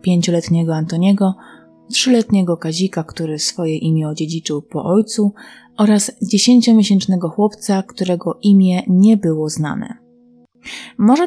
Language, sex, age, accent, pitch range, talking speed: Polish, female, 30-49, native, 170-215 Hz, 100 wpm